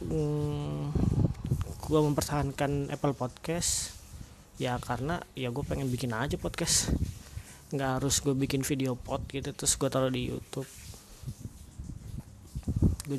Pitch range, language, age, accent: 120-140 Hz, Indonesian, 20-39, native